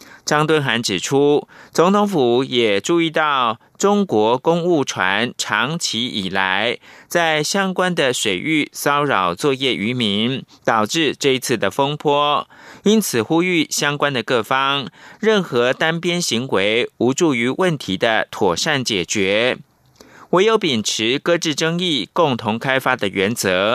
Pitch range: 125-170 Hz